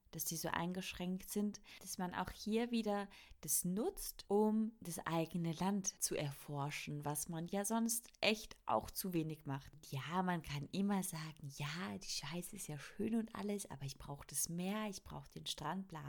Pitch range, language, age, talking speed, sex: 165-210 Hz, German, 30-49, 185 wpm, female